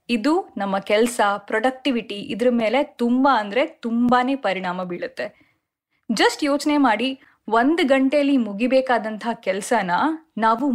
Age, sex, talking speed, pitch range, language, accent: 20-39, female, 105 wpm, 210-280 Hz, Kannada, native